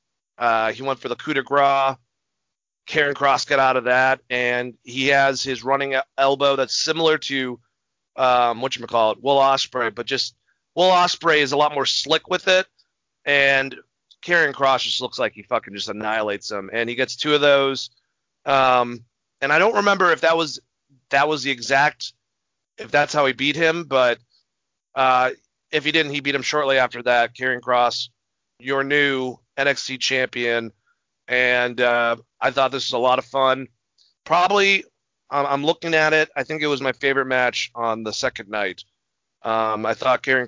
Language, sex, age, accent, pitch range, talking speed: English, male, 30-49, American, 125-145 Hz, 185 wpm